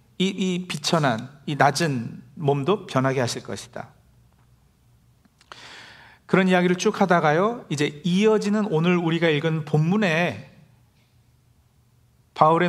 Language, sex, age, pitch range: Korean, male, 40-59, 130-190 Hz